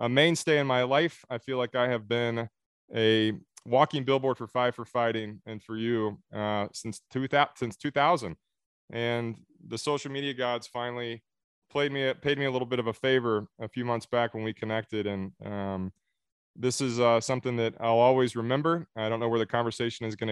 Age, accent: 20-39, American